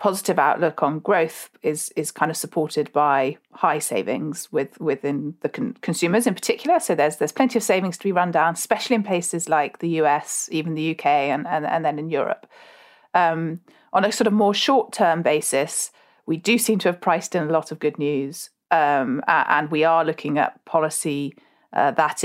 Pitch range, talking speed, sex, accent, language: 150-185 Hz, 195 wpm, female, British, English